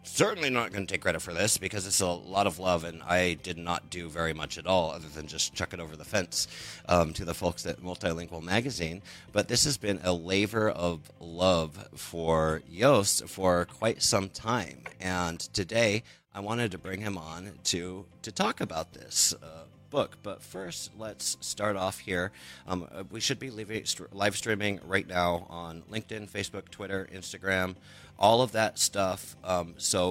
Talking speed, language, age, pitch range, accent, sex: 185 wpm, English, 30-49, 85-105 Hz, American, male